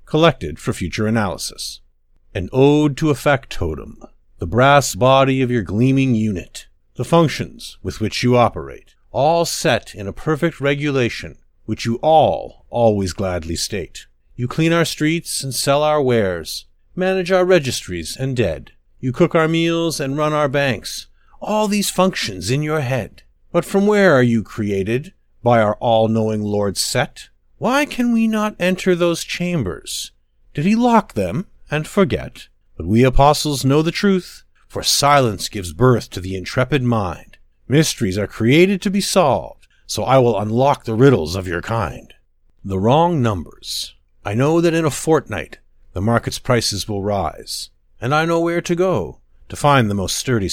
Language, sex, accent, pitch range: English, male, American, 105-160 Hz